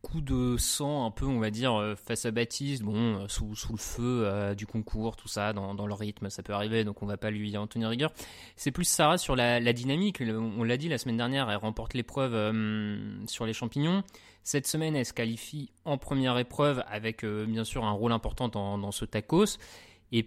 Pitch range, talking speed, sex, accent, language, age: 110-135 Hz, 230 wpm, male, French, French, 20-39